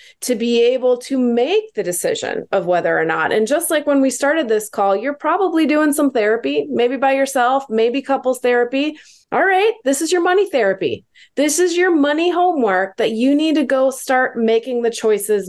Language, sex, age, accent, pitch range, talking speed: English, female, 20-39, American, 215-270 Hz, 200 wpm